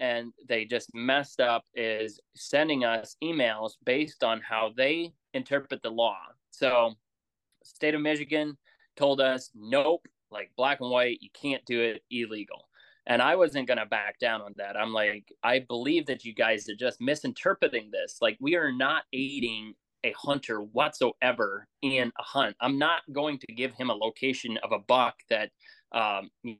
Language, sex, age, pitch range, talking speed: English, male, 20-39, 110-135 Hz, 170 wpm